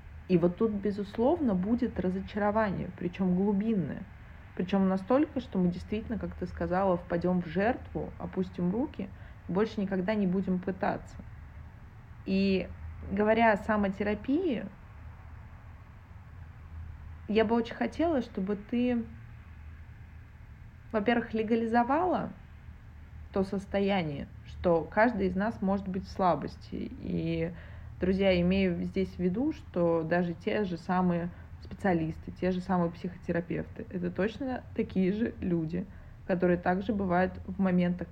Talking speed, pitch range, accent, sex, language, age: 115 wpm, 155-205 Hz, native, female, Russian, 20-39